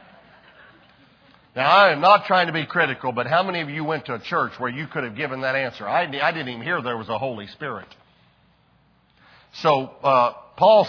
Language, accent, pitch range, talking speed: English, American, 150-210 Hz, 205 wpm